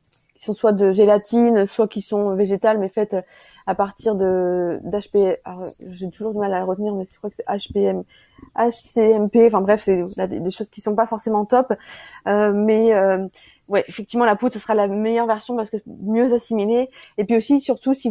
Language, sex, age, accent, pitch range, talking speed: French, female, 20-39, French, 195-230 Hz, 205 wpm